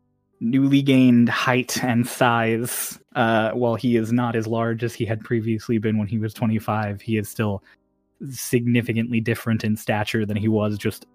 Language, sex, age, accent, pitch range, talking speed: English, male, 20-39, American, 110-145 Hz, 170 wpm